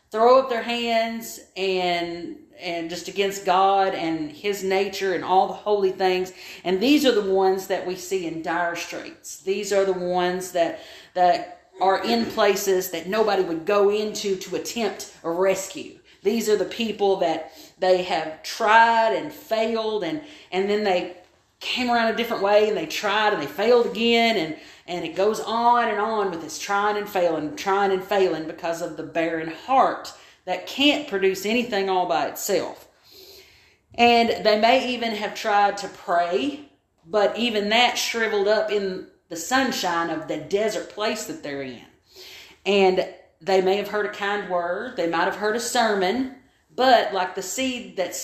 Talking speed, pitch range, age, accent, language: 175 wpm, 180-220 Hz, 40-59, American, English